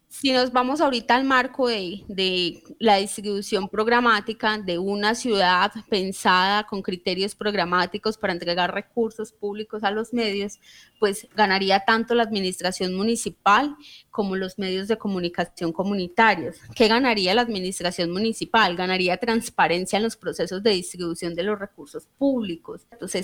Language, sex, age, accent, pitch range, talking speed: Spanish, female, 20-39, Colombian, 185-225 Hz, 140 wpm